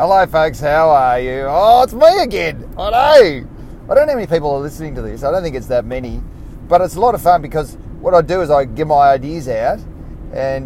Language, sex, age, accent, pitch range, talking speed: English, male, 30-49, Australian, 115-170 Hz, 250 wpm